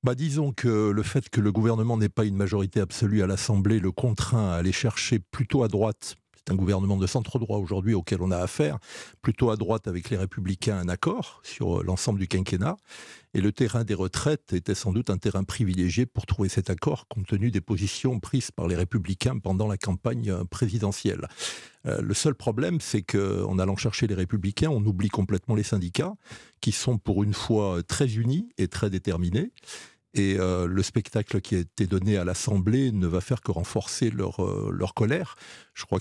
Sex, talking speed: male, 200 wpm